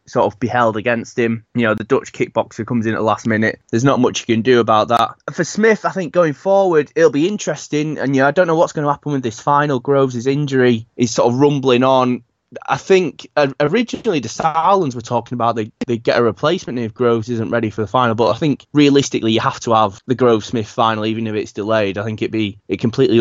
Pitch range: 115-140 Hz